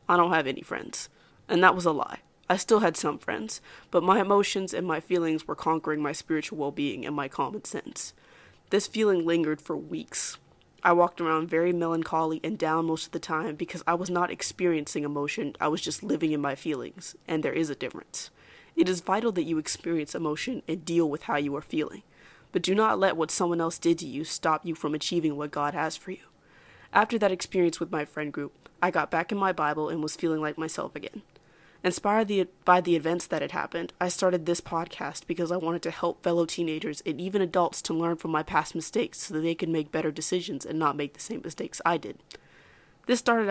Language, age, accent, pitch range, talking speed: English, 20-39, American, 155-180 Hz, 220 wpm